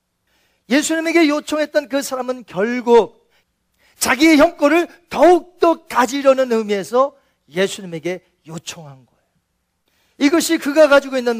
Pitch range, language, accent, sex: 200-290 Hz, Korean, native, male